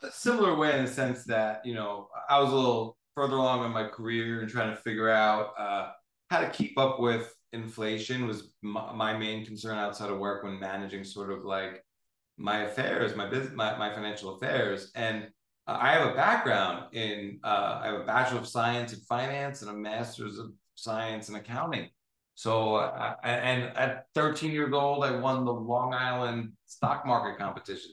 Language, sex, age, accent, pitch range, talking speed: English, male, 30-49, American, 105-125 Hz, 190 wpm